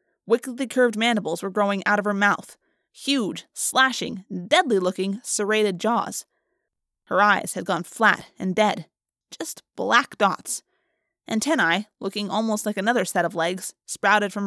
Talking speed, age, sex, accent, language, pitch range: 140 wpm, 20-39, female, American, English, 205-290 Hz